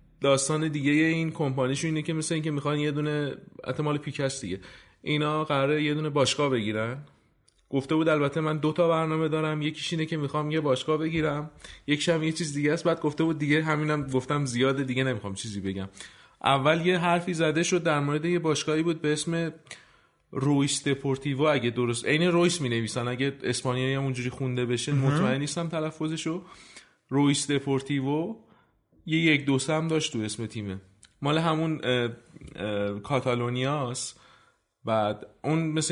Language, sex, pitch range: Persian, male, 125-155 Hz